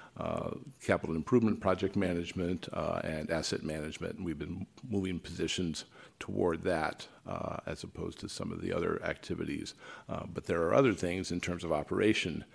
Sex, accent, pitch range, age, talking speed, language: male, American, 85-100 Hz, 50-69, 165 wpm, English